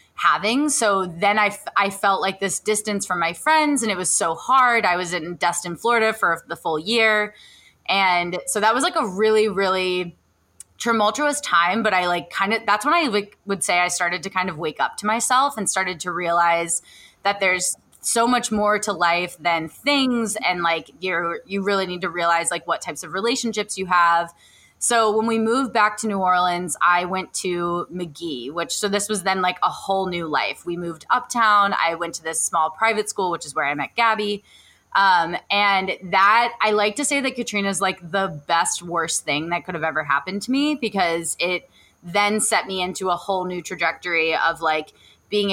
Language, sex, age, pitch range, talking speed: English, female, 20-39, 170-210 Hz, 210 wpm